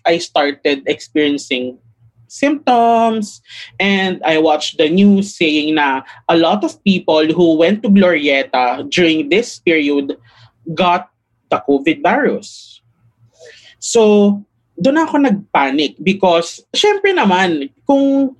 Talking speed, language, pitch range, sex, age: 110 wpm, English, 145-215 Hz, male, 20-39